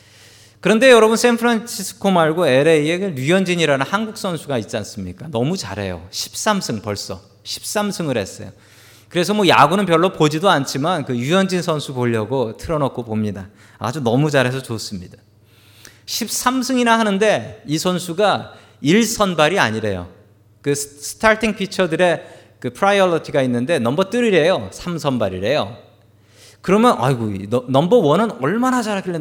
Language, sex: Korean, male